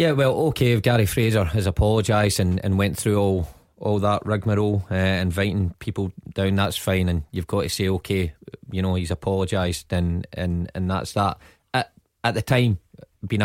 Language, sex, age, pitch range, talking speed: English, male, 30-49, 95-120 Hz, 185 wpm